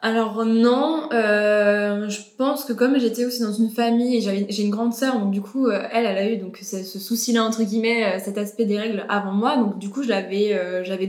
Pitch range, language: 195-225 Hz, French